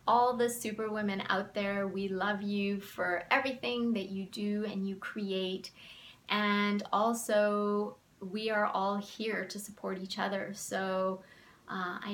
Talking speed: 145 wpm